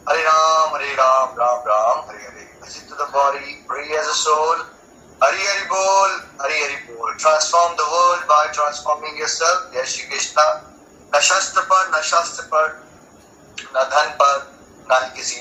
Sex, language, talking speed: male, Hindi, 95 wpm